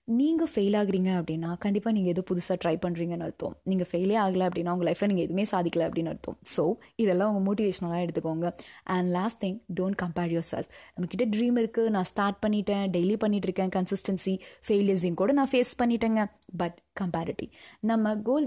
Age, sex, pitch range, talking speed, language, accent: 20-39, female, 175-220 Hz, 170 wpm, Tamil, native